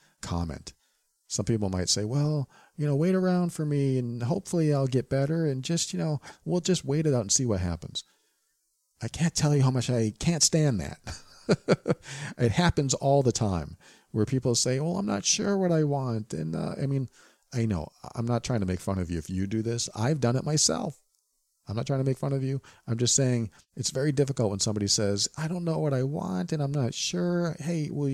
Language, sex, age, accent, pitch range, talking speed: English, male, 40-59, American, 100-145 Hz, 225 wpm